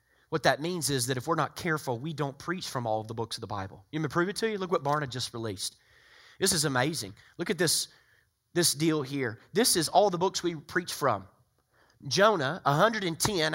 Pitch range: 145-195 Hz